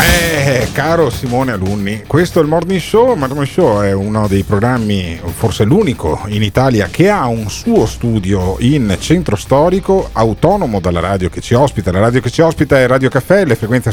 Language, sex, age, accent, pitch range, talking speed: Italian, male, 40-59, native, 105-165 Hz, 190 wpm